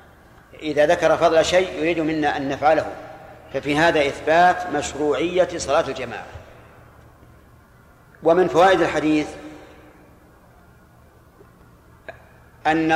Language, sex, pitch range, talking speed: Arabic, male, 140-165 Hz, 85 wpm